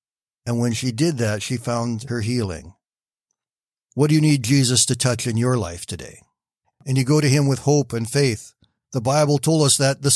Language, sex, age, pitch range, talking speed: English, male, 50-69, 110-140 Hz, 205 wpm